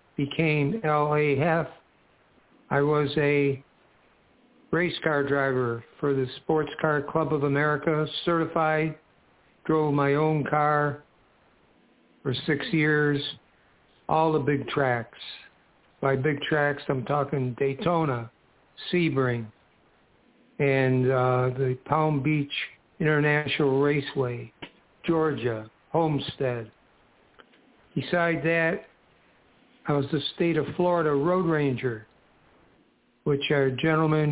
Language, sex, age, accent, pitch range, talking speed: English, male, 60-79, American, 135-150 Hz, 100 wpm